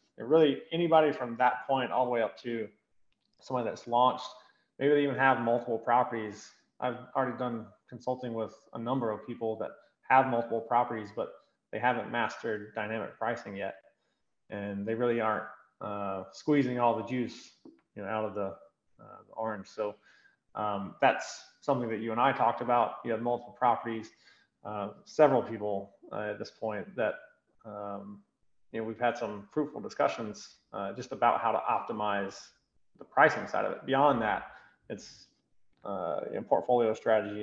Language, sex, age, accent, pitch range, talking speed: English, male, 20-39, American, 110-135 Hz, 170 wpm